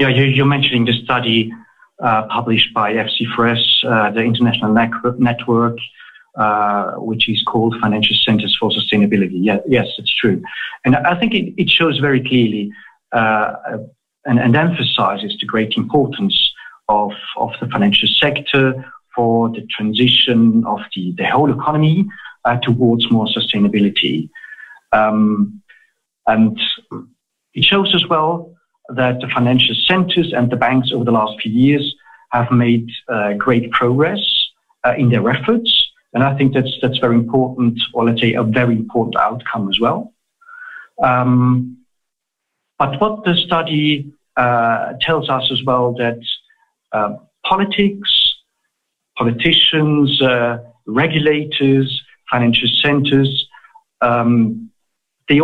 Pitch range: 115-155 Hz